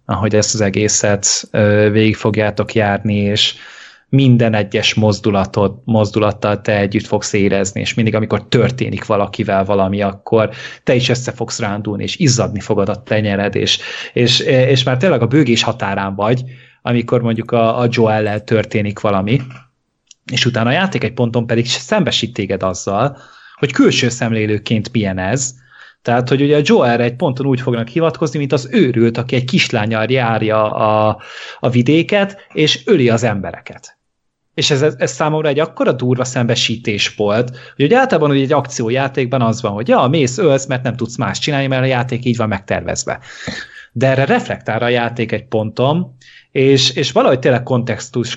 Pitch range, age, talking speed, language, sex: 105-130 Hz, 20-39, 165 wpm, Hungarian, male